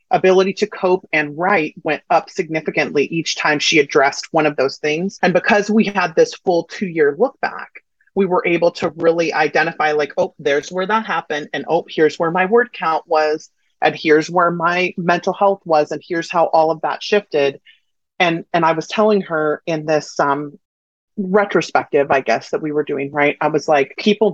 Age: 30-49